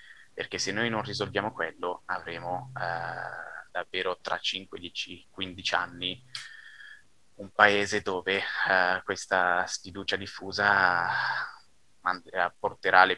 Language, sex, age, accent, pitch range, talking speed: Italian, male, 20-39, native, 90-110 Hz, 110 wpm